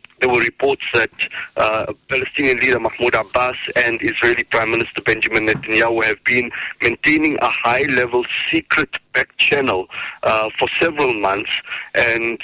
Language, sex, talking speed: English, male, 130 wpm